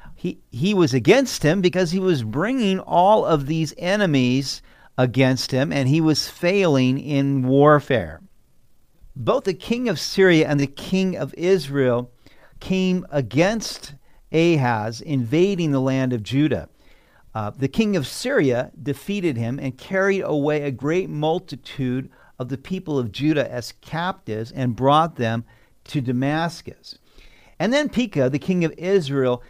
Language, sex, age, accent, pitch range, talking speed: English, male, 50-69, American, 130-180 Hz, 145 wpm